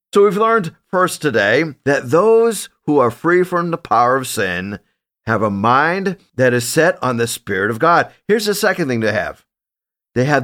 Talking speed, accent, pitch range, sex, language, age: 195 wpm, American, 135-180 Hz, male, English, 50-69